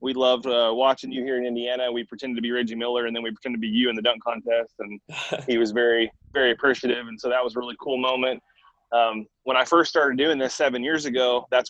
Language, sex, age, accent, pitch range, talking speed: English, male, 20-39, American, 115-130 Hz, 255 wpm